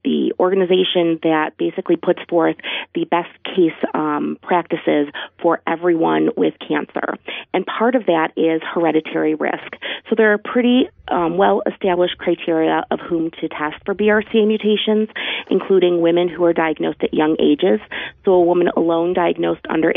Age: 30-49